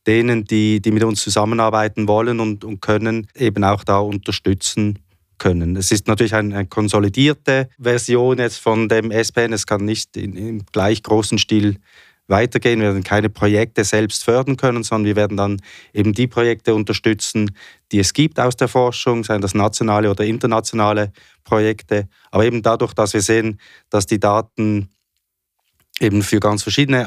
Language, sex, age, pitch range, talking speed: German, male, 20-39, 100-115 Hz, 165 wpm